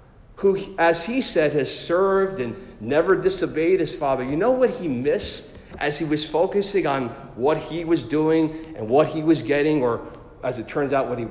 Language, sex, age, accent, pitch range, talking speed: English, male, 40-59, American, 130-160 Hz, 195 wpm